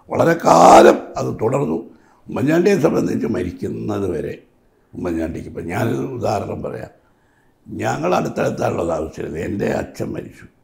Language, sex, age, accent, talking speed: Malayalam, male, 60-79, native, 105 wpm